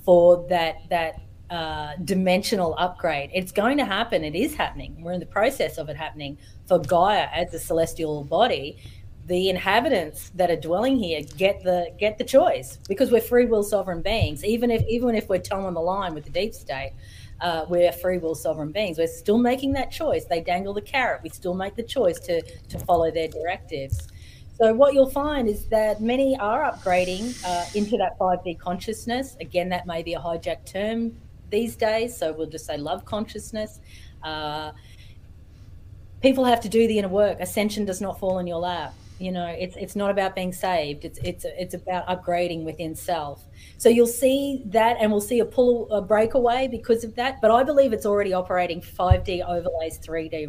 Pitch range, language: 165-225 Hz, English